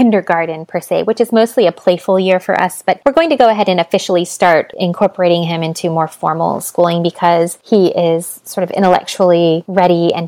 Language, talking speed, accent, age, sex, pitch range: English, 200 wpm, American, 20-39, female, 175-210 Hz